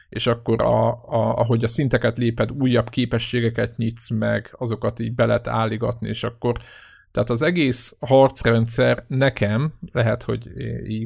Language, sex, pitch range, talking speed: Hungarian, male, 110-125 Hz, 135 wpm